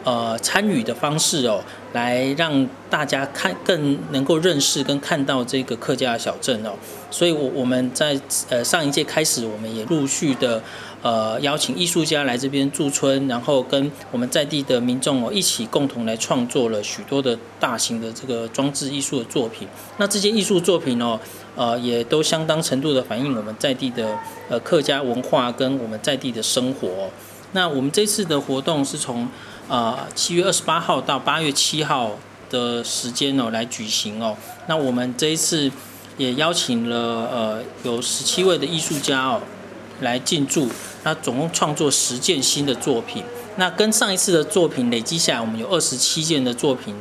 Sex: male